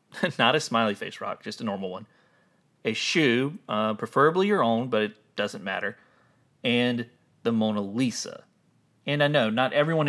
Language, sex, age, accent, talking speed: English, male, 30-49, American, 165 wpm